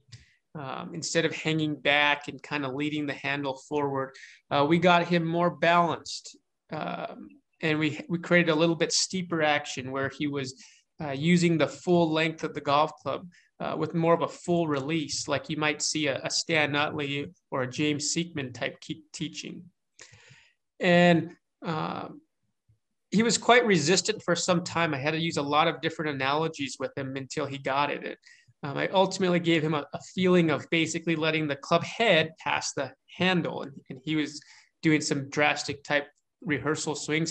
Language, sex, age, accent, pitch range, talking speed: English, male, 20-39, American, 145-170 Hz, 185 wpm